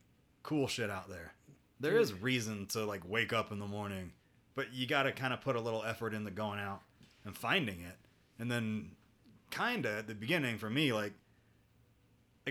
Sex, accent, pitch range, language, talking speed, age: male, American, 105-125 Hz, English, 195 wpm, 30-49